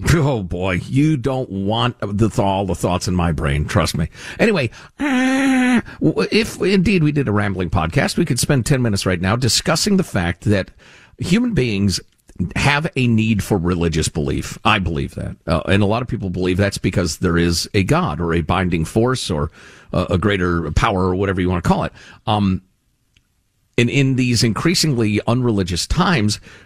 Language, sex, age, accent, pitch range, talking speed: English, male, 50-69, American, 95-130 Hz, 180 wpm